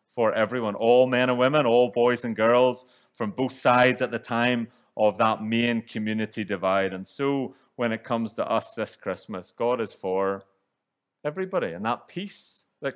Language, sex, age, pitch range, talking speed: English, male, 30-49, 110-140 Hz, 175 wpm